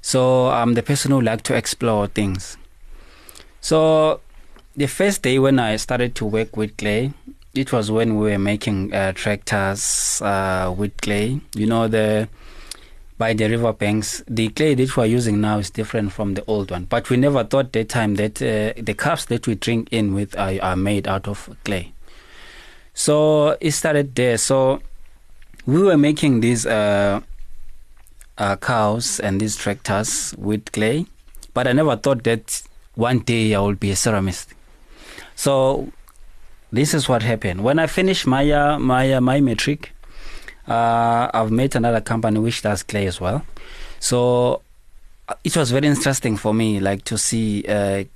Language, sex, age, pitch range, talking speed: English, male, 20-39, 100-125 Hz, 170 wpm